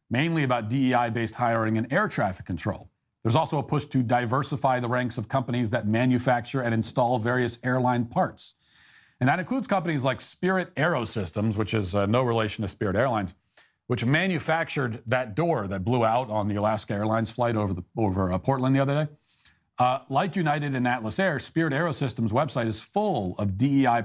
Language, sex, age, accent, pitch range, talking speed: English, male, 40-59, American, 115-145 Hz, 180 wpm